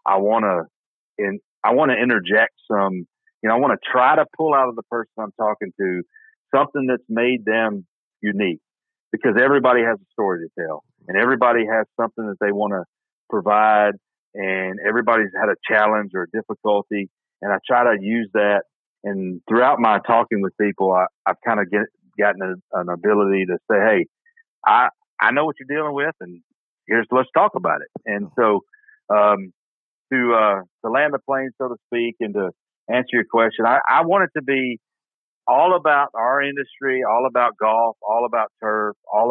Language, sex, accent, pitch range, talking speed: English, male, American, 100-125 Hz, 185 wpm